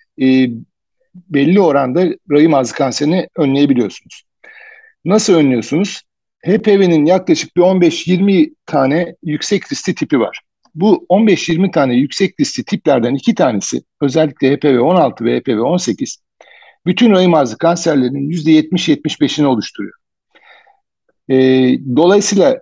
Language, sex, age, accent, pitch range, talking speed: Turkish, male, 60-79, native, 145-205 Hz, 100 wpm